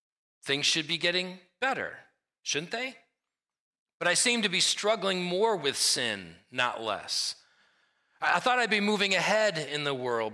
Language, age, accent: English, 40-59, American